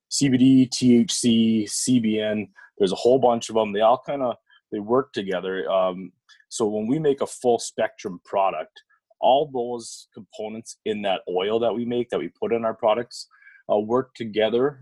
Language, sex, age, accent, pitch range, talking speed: English, male, 30-49, American, 105-135 Hz, 175 wpm